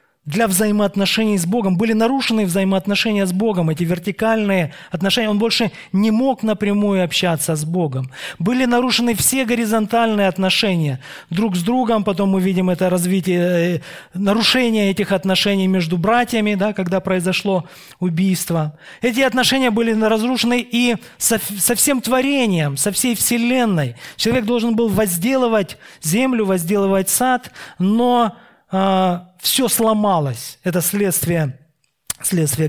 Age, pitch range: 20-39, 175-230 Hz